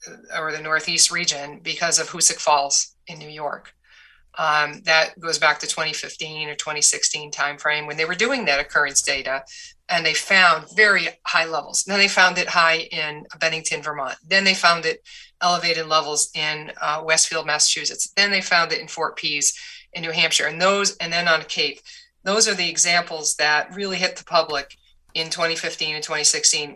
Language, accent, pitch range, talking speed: English, American, 150-180 Hz, 180 wpm